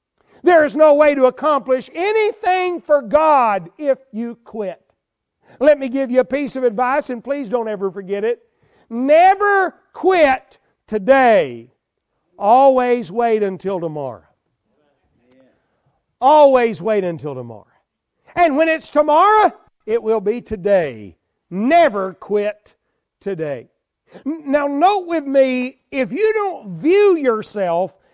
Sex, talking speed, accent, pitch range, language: male, 120 wpm, American, 205-275 Hz, English